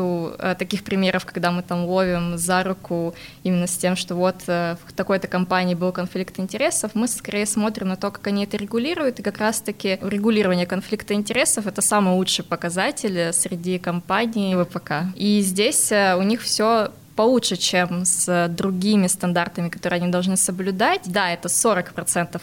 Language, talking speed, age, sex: Russian, 160 wpm, 20-39, female